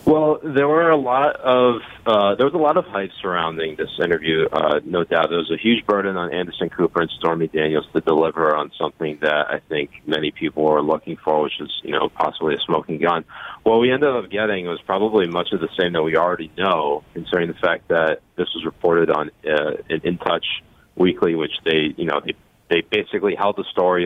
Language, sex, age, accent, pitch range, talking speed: English, male, 30-49, American, 85-115 Hz, 215 wpm